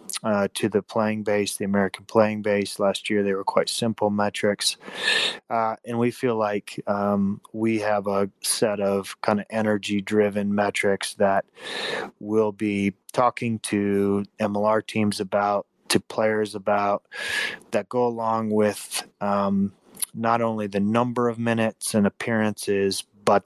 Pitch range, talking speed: 100-110 Hz, 145 wpm